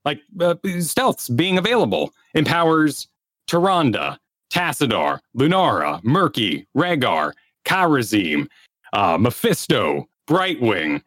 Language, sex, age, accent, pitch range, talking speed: English, male, 30-49, American, 125-180 Hz, 80 wpm